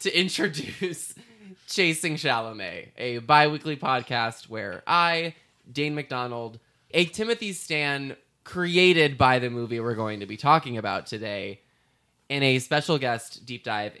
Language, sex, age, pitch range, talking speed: English, male, 20-39, 105-145 Hz, 135 wpm